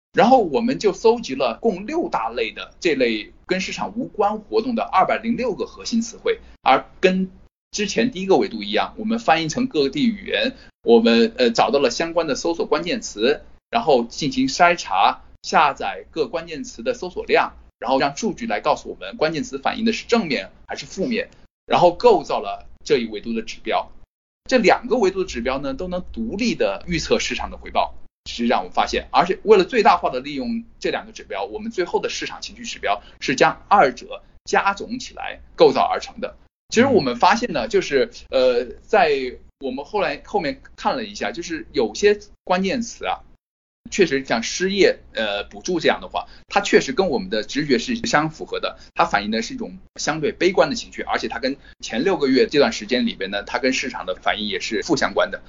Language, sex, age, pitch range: Chinese, male, 20-39, 180-275 Hz